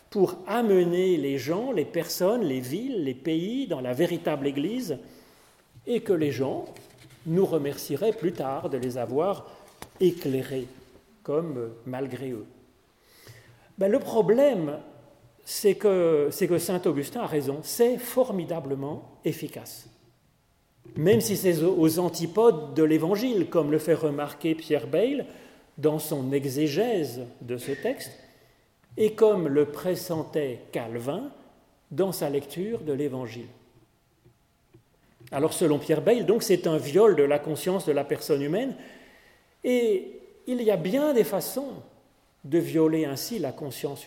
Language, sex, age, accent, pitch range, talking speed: French, male, 40-59, French, 145-200 Hz, 135 wpm